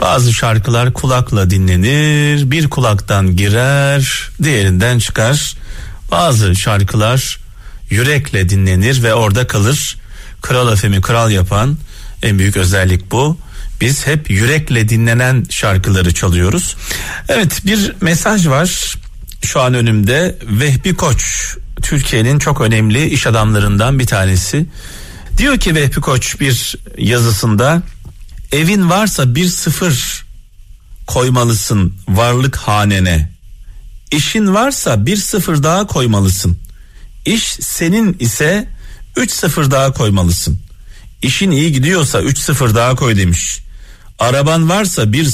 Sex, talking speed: male, 110 wpm